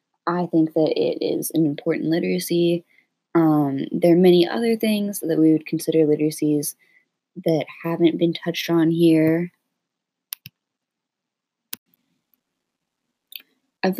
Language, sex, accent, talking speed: English, female, American, 110 wpm